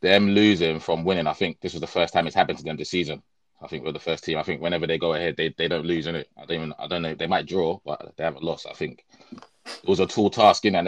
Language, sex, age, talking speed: English, male, 20-39, 320 wpm